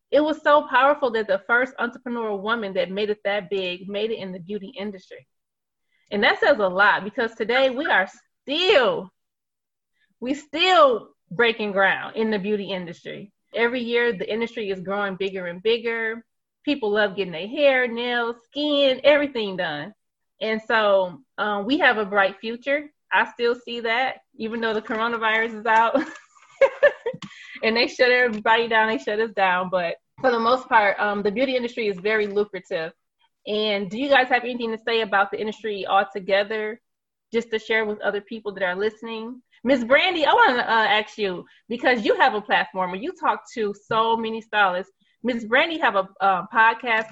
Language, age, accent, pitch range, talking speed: English, 20-39, American, 200-250 Hz, 180 wpm